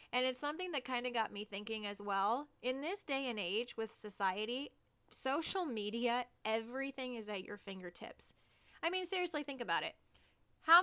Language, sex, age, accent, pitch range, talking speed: English, female, 30-49, American, 220-275 Hz, 175 wpm